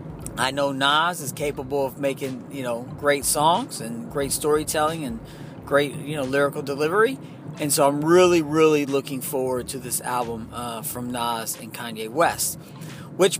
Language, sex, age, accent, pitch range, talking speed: English, male, 40-59, American, 140-165 Hz, 165 wpm